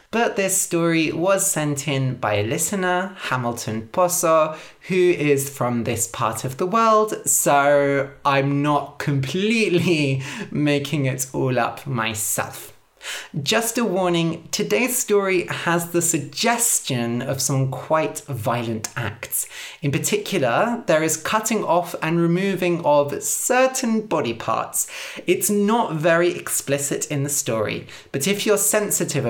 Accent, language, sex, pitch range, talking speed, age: British, English, male, 130-180 Hz, 130 wpm, 20-39